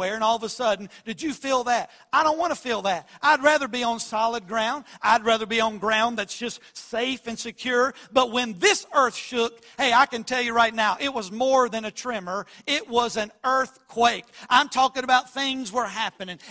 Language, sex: English, male